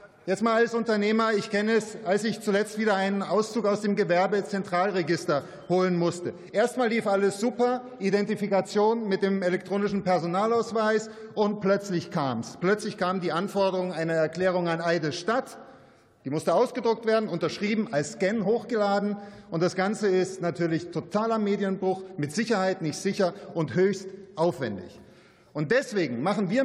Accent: German